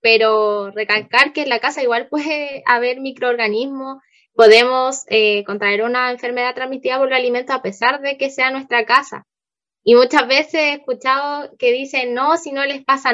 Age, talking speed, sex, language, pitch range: 10-29, 175 wpm, female, Romanian, 225-275 Hz